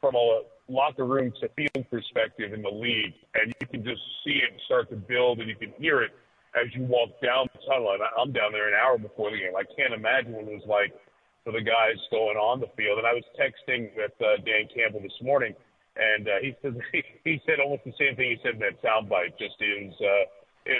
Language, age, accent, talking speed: English, 40-59, American, 235 wpm